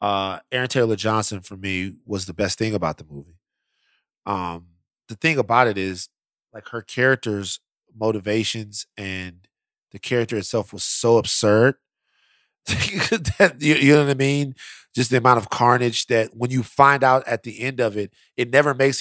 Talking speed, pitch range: 170 wpm, 100-125 Hz